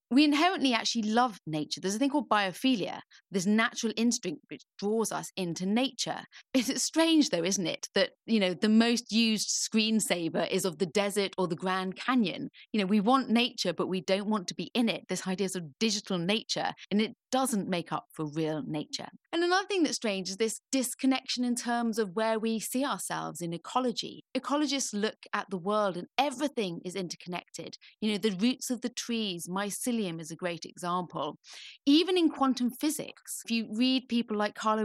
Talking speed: 200 wpm